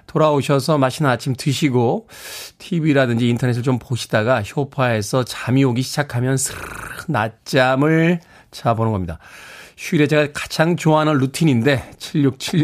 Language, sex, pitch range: Korean, male, 120-165 Hz